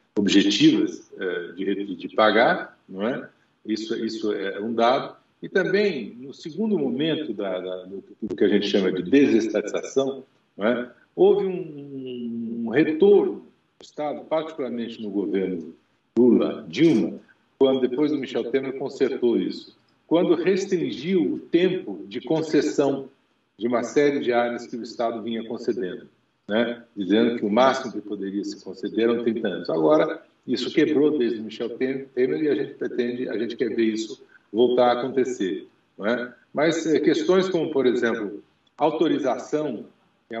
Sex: male